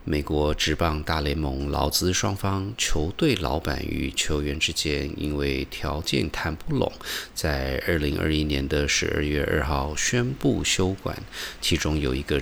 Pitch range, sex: 70-80 Hz, male